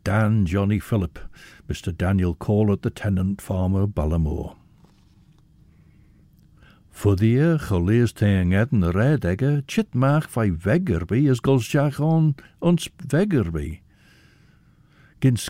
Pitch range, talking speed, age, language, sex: 90-140 Hz, 105 wpm, 60-79, English, male